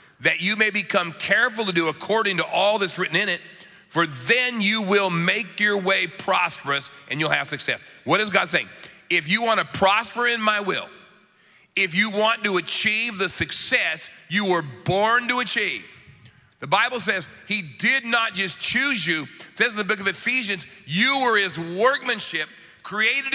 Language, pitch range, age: English, 130-200 Hz, 40-59